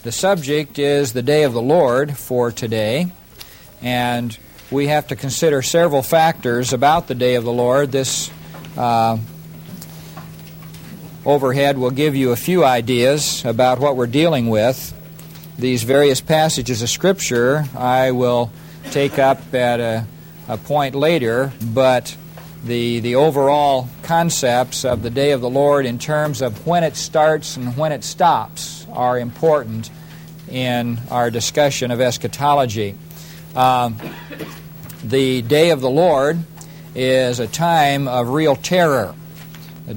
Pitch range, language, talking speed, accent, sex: 120-155 Hz, English, 140 wpm, American, male